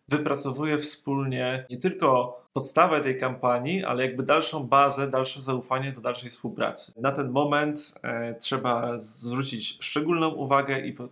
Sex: male